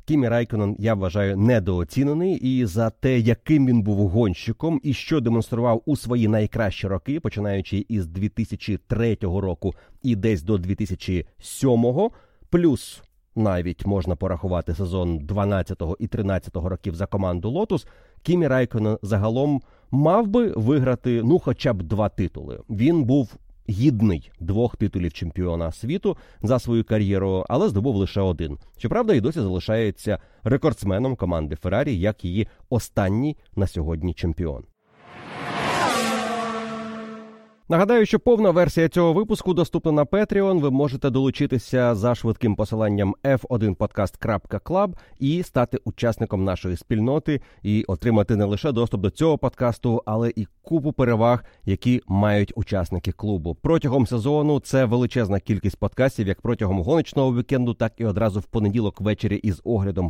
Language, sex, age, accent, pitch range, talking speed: Ukrainian, male, 30-49, native, 100-135 Hz, 130 wpm